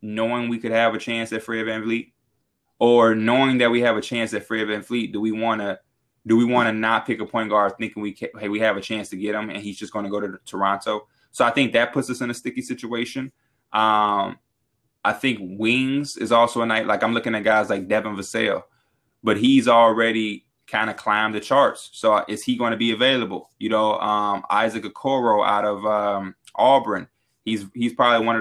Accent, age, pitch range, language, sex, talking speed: American, 20-39, 105-120 Hz, English, male, 230 wpm